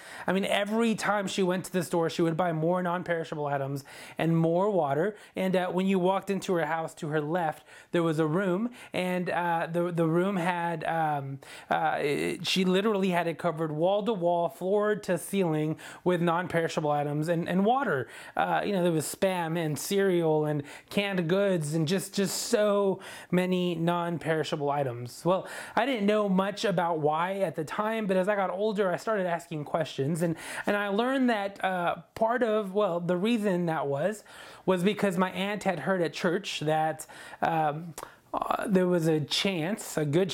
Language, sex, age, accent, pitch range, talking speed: English, male, 30-49, American, 160-195 Hz, 185 wpm